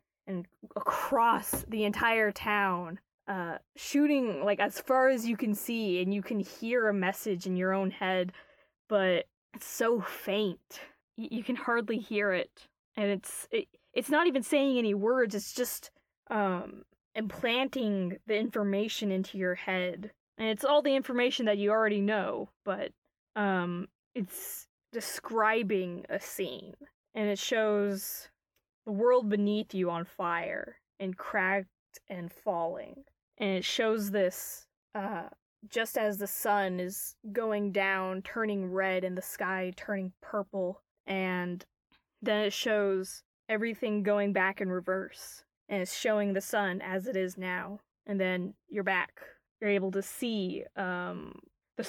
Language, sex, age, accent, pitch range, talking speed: English, female, 20-39, American, 190-225 Hz, 145 wpm